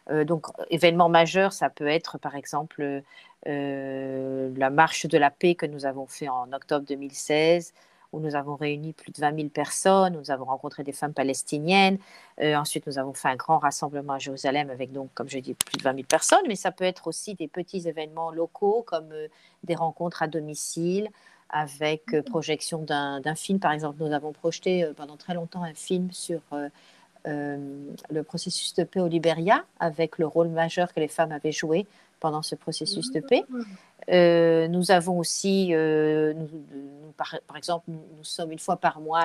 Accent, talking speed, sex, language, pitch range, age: French, 200 wpm, female, French, 150-175 Hz, 40-59